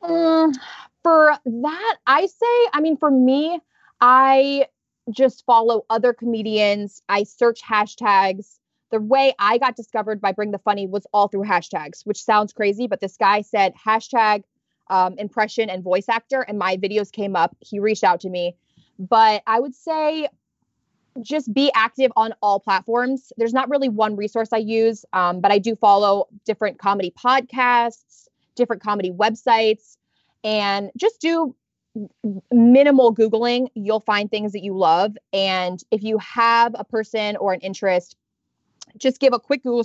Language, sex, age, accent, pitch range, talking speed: English, female, 20-39, American, 200-255 Hz, 160 wpm